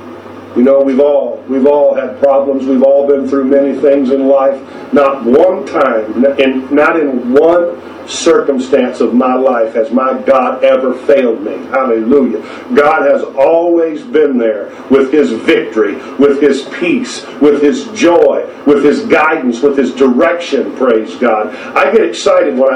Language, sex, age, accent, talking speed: English, male, 50-69, American, 160 wpm